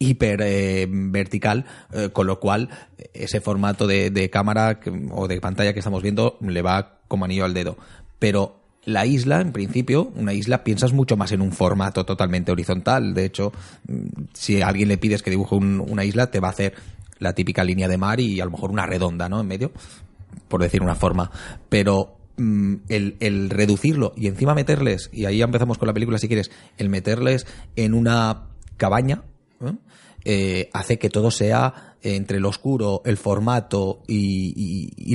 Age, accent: 30-49, Spanish